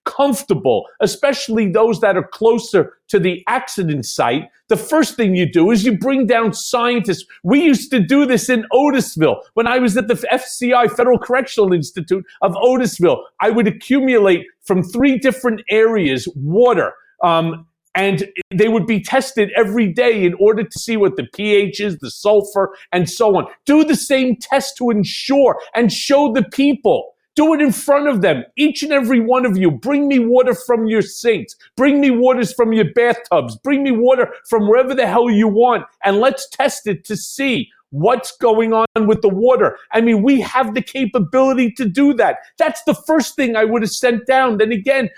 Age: 40-59